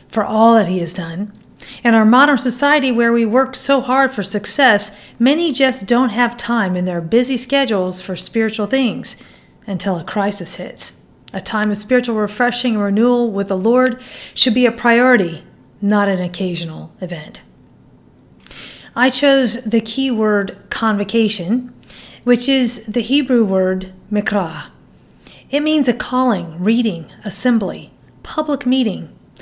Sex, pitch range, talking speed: female, 195-250 Hz, 145 wpm